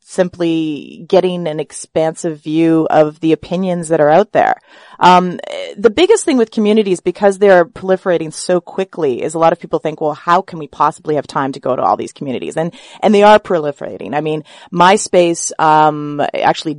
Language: English